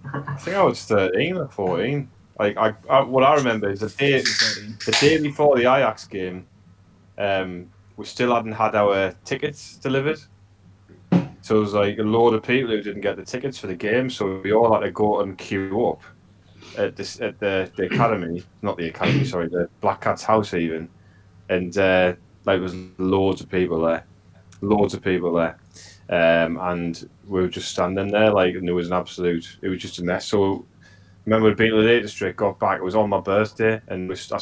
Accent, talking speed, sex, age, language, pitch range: British, 205 wpm, male, 10-29, English, 90-110 Hz